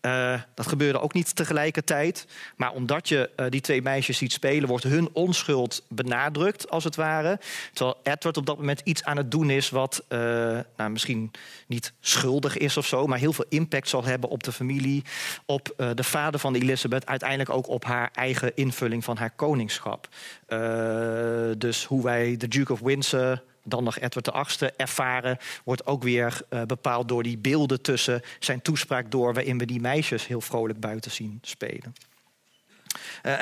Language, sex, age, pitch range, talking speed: Dutch, male, 40-59, 125-155 Hz, 180 wpm